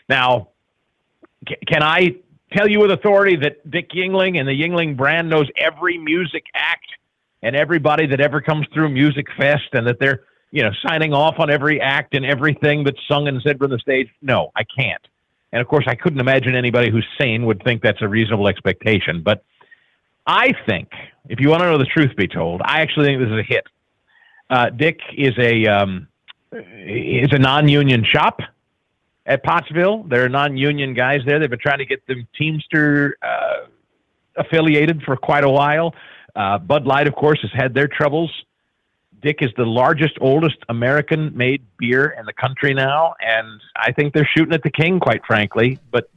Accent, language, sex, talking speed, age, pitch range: American, English, male, 185 wpm, 50-69, 120-155 Hz